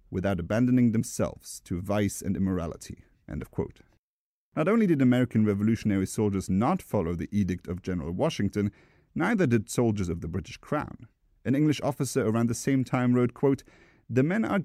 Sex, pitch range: male, 95-135 Hz